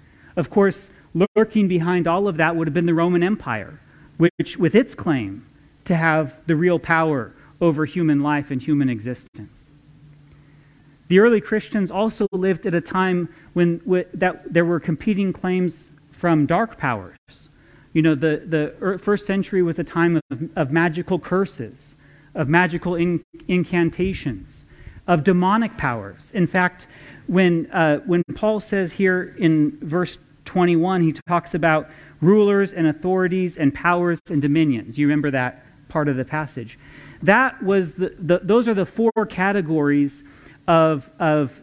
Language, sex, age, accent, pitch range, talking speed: English, male, 40-59, American, 150-185 Hz, 145 wpm